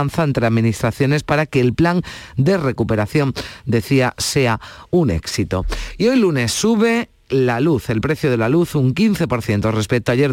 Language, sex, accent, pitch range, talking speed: Spanish, male, Spanish, 115-150 Hz, 165 wpm